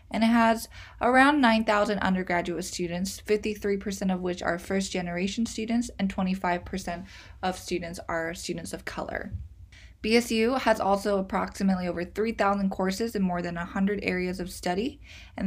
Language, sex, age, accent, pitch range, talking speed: English, female, 20-39, American, 185-225 Hz, 140 wpm